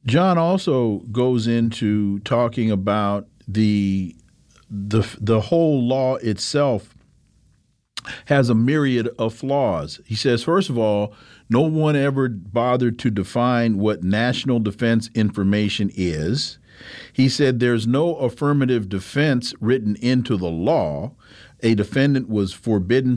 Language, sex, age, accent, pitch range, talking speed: English, male, 40-59, American, 105-145 Hz, 120 wpm